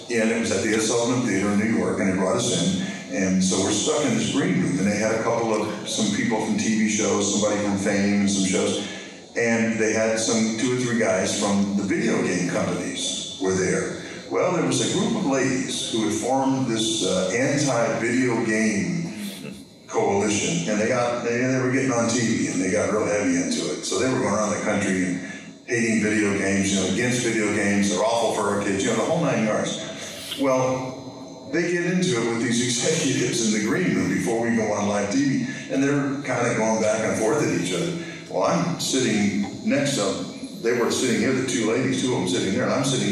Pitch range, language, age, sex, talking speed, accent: 100-130 Hz, English, 50-69, male, 230 wpm, American